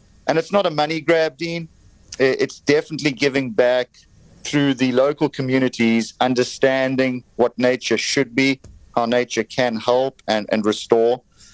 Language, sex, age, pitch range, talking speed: English, male, 50-69, 110-140 Hz, 140 wpm